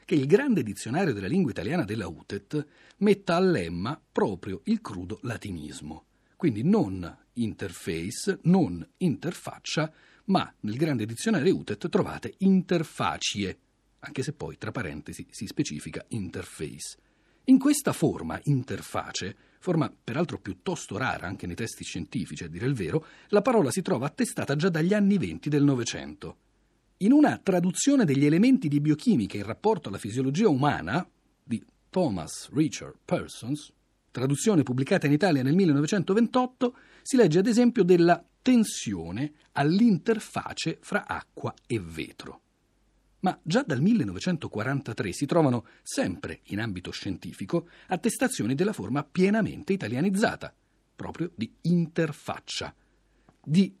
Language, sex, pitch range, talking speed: Italian, male, 115-195 Hz, 130 wpm